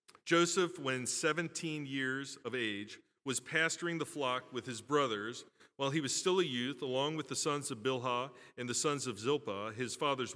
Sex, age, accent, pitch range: male, 40-59, American, 120-145 Hz